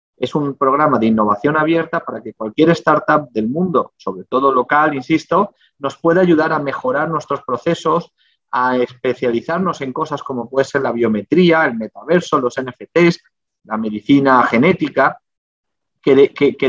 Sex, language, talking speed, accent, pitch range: male, Portuguese, 145 wpm, Spanish, 125-165 Hz